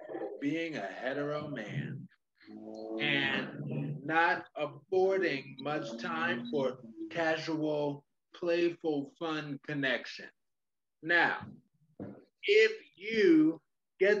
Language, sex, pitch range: English, male, 150-185 Hz